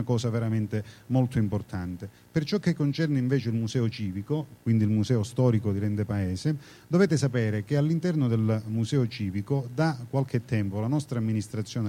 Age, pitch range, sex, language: 40-59, 110-145 Hz, male, Italian